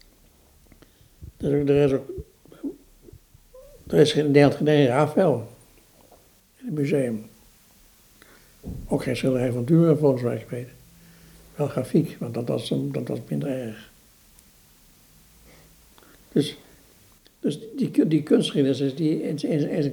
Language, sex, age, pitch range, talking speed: Dutch, male, 60-79, 120-150 Hz, 100 wpm